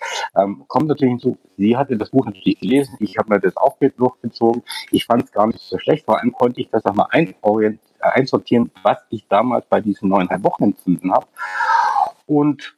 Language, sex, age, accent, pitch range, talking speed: German, male, 50-69, German, 95-130 Hz, 195 wpm